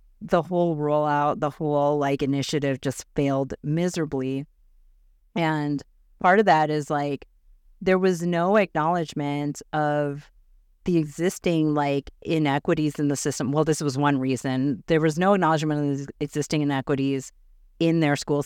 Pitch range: 135-160 Hz